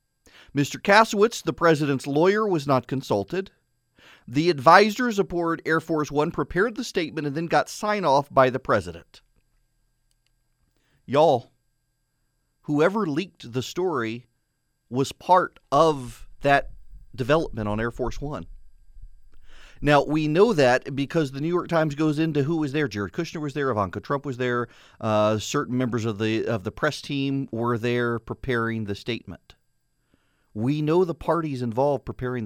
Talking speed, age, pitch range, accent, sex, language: 150 wpm, 40-59, 115-155 Hz, American, male, English